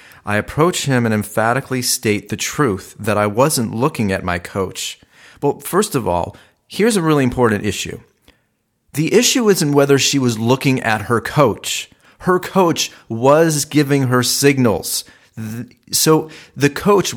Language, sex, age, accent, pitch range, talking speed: English, male, 40-59, American, 120-155 Hz, 150 wpm